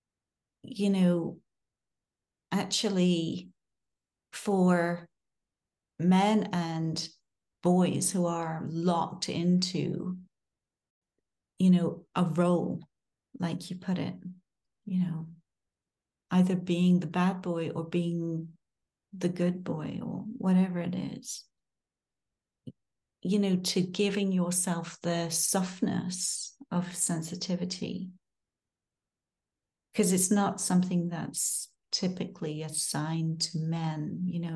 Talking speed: 95 wpm